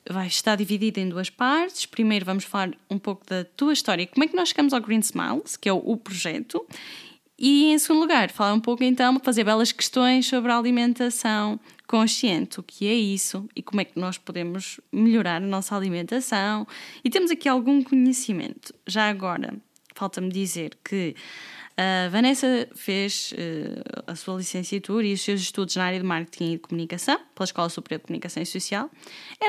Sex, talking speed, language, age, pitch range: female, 185 wpm, Portuguese, 10-29, 195-255 Hz